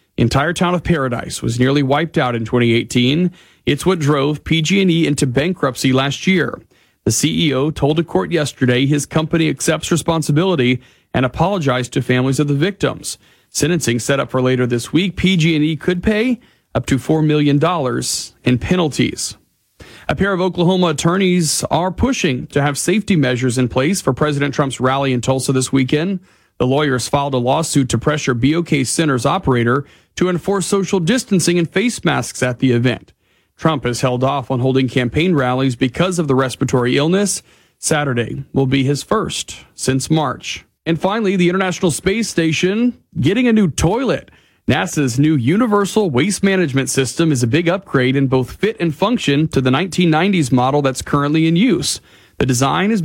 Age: 40-59